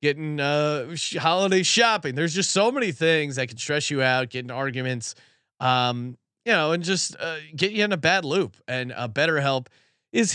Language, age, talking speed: English, 30-49, 195 wpm